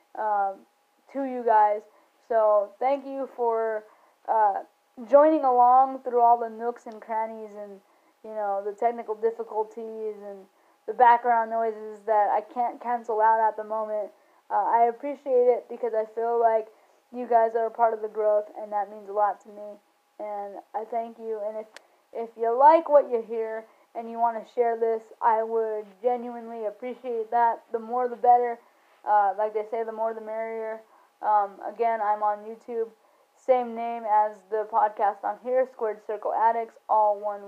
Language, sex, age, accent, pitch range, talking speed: English, female, 10-29, American, 215-240 Hz, 175 wpm